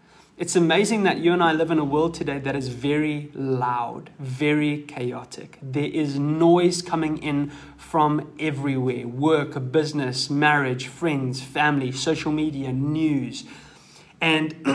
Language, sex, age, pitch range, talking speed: English, male, 20-39, 140-175 Hz, 135 wpm